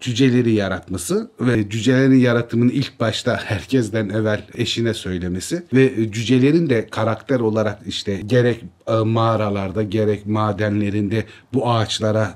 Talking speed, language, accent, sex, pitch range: 110 wpm, Turkish, native, male, 105-130 Hz